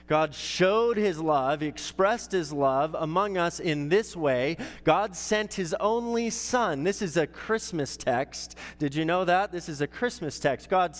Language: English